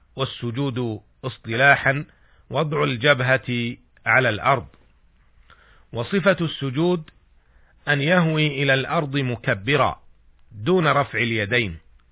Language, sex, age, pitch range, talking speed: Arabic, male, 40-59, 115-145 Hz, 80 wpm